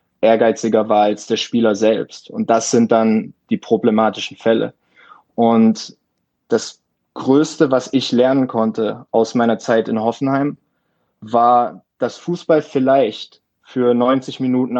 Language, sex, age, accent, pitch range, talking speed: German, male, 20-39, German, 115-135 Hz, 130 wpm